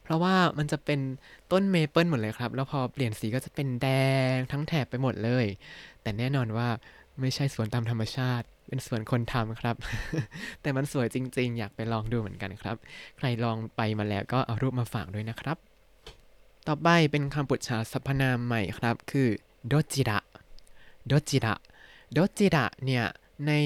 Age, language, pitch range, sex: 20-39, Thai, 115-150 Hz, male